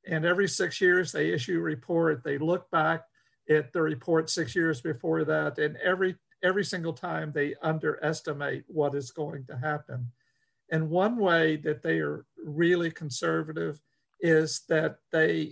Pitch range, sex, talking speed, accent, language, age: 145-170 Hz, male, 160 wpm, American, English, 50-69